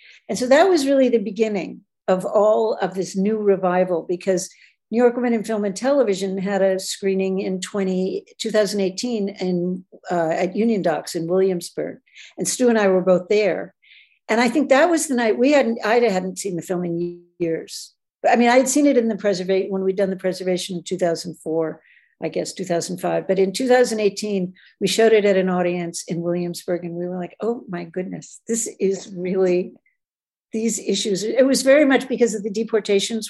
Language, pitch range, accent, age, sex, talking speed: English, 180-225 Hz, American, 60-79, female, 195 wpm